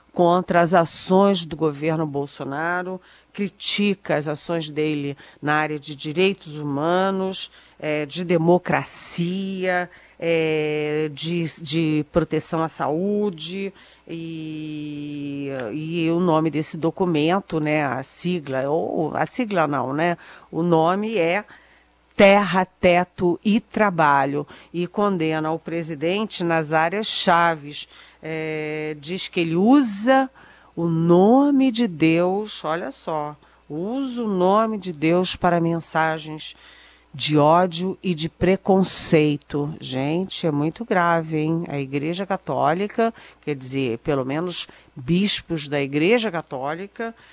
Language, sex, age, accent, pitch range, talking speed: Portuguese, female, 50-69, Brazilian, 155-190 Hz, 110 wpm